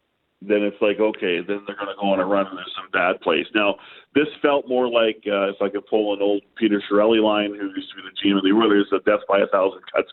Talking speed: 275 wpm